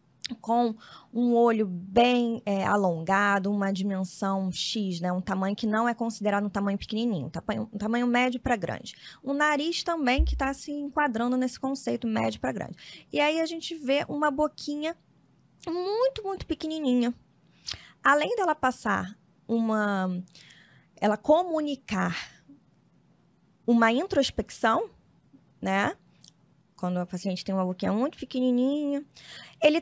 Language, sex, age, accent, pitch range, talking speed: Portuguese, female, 20-39, Brazilian, 195-270 Hz, 135 wpm